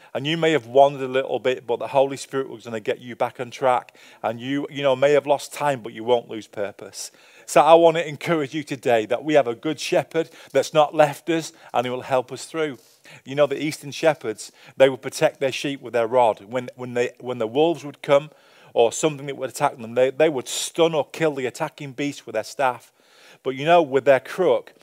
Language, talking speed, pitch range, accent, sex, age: English, 245 wpm, 120-145 Hz, British, male, 40-59